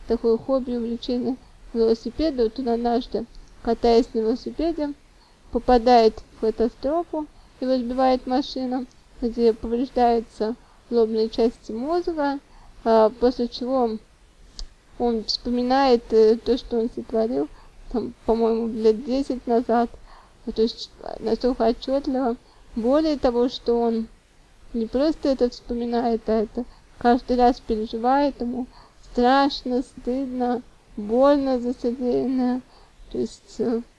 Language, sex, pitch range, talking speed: Russian, female, 230-255 Hz, 100 wpm